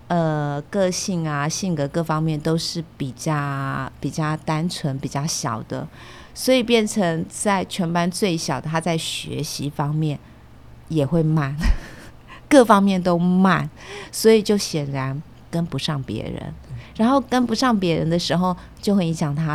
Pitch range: 140-180 Hz